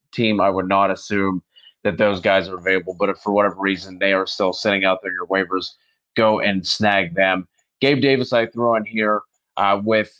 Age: 30-49